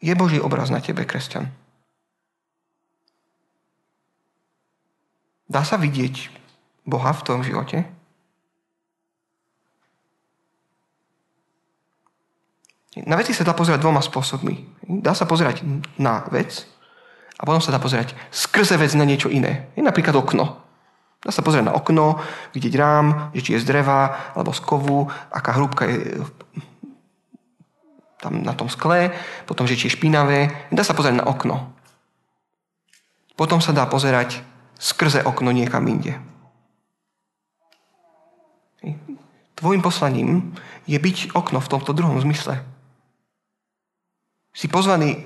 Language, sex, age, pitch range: Slovak, male, 30-49, 135-175 Hz